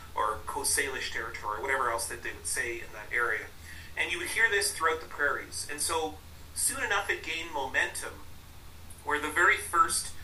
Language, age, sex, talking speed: English, 30-49, male, 195 wpm